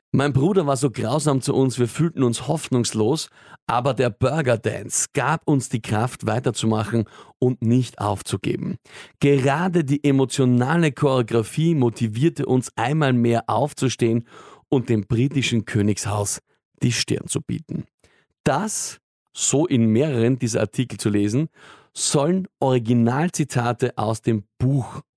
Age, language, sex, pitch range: 40-59, German, male, 115-145 Hz